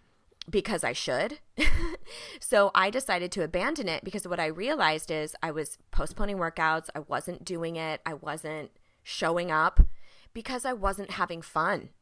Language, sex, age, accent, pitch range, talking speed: English, female, 20-39, American, 160-195 Hz, 155 wpm